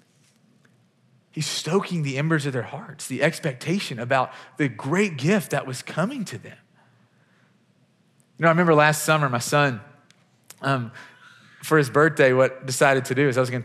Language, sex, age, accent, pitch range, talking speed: English, male, 30-49, American, 130-185 Hz, 170 wpm